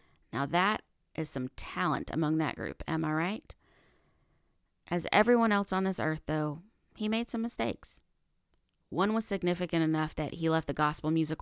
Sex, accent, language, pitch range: female, American, English, 155-195 Hz